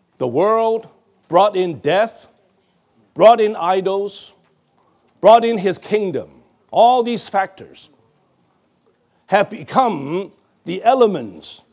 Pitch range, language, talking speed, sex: 180-230 Hz, English, 95 wpm, male